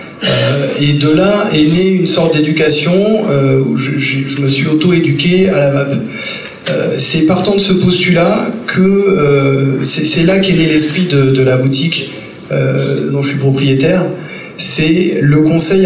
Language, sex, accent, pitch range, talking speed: French, male, French, 140-175 Hz, 175 wpm